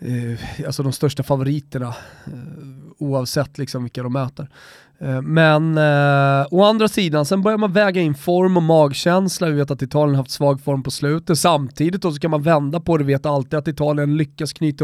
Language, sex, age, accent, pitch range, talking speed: Swedish, male, 20-39, native, 140-170 Hz, 200 wpm